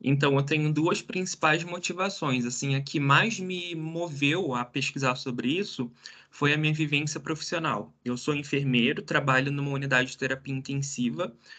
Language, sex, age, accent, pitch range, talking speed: Portuguese, male, 20-39, Brazilian, 140-170 Hz, 155 wpm